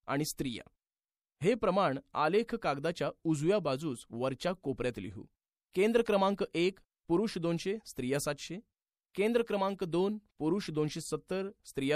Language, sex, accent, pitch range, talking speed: Marathi, male, native, 145-200 Hz, 115 wpm